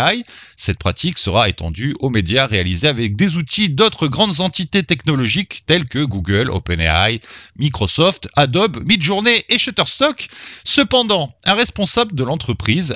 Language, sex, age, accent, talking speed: French, male, 30-49, French, 130 wpm